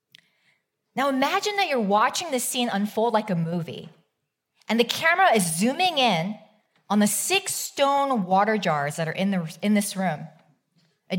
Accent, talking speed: American, 160 wpm